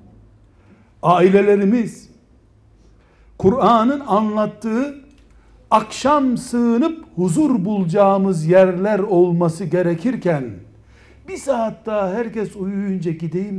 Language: Turkish